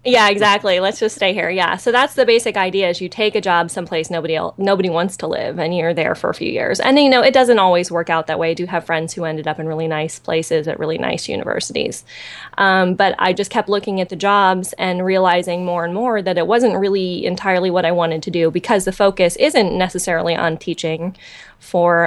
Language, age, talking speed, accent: English, 20-39, 240 wpm, American